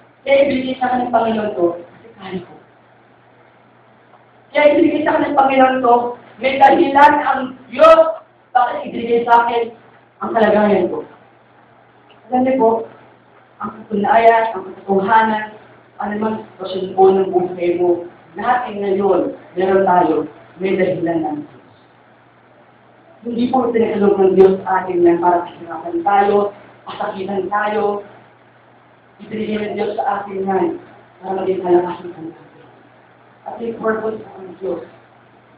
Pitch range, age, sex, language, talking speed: 190-250 Hz, 40-59, female, English, 95 wpm